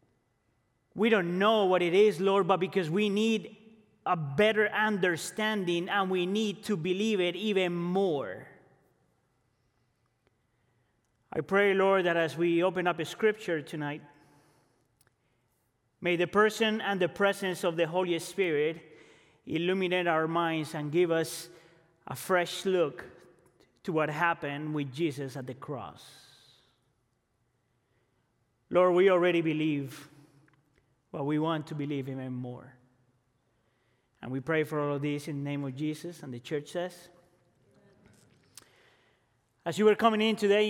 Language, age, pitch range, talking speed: English, 30-49, 145-195 Hz, 140 wpm